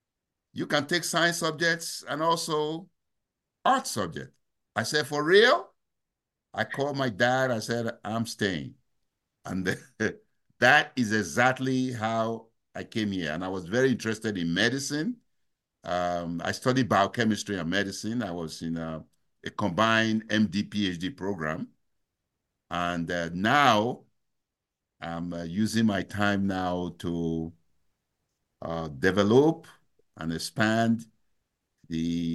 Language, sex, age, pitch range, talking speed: English, male, 60-79, 85-115 Hz, 120 wpm